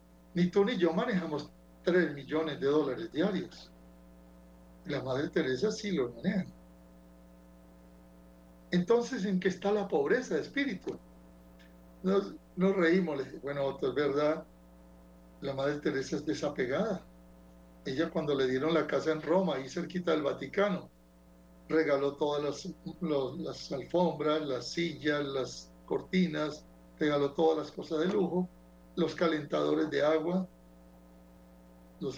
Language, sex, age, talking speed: Spanish, male, 60-79, 125 wpm